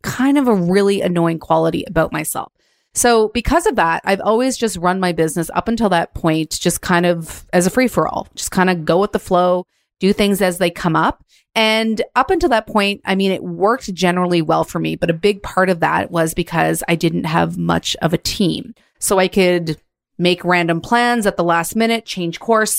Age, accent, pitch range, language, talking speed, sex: 30-49, American, 170-220 Hz, English, 220 wpm, female